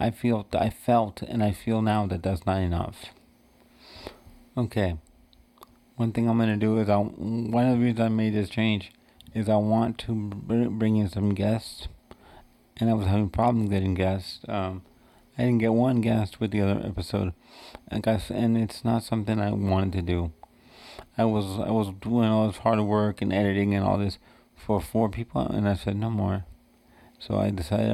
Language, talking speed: English, 190 wpm